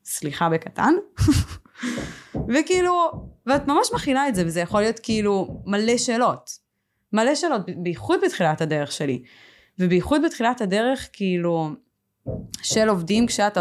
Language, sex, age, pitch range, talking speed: Hebrew, female, 20-39, 165-220 Hz, 125 wpm